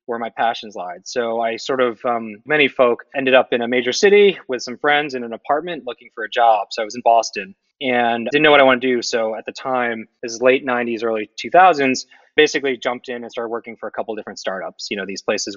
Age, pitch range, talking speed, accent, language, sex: 20-39, 115-135 Hz, 250 wpm, American, English, male